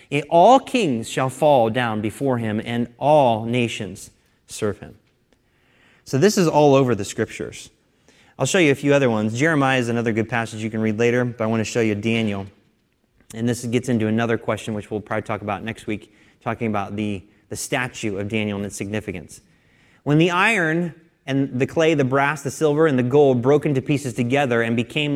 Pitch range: 115-150 Hz